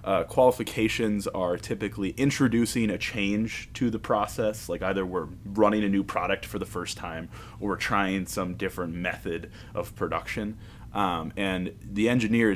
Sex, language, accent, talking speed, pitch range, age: male, English, American, 160 wpm, 100-120 Hz, 20-39